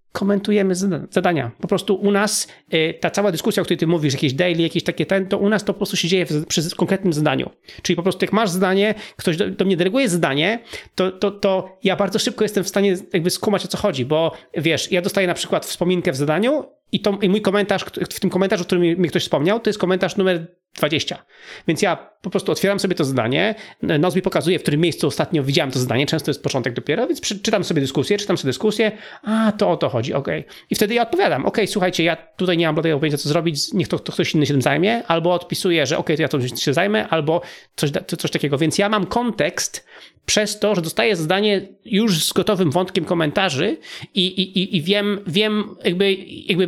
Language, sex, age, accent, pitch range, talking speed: Polish, male, 30-49, native, 170-200 Hz, 225 wpm